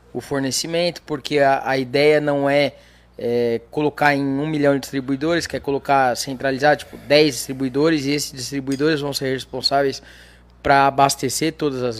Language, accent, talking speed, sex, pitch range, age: Portuguese, Brazilian, 160 wpm, male, 130-165 Hz, 20-39